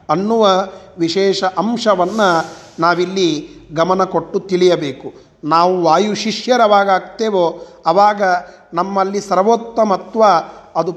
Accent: native